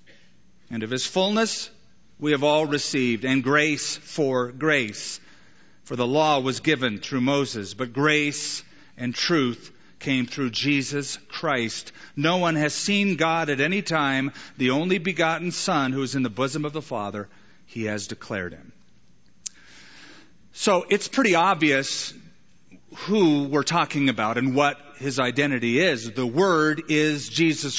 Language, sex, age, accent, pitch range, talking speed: English, male, 40-59, American, 130-170 Hz, 145 wpm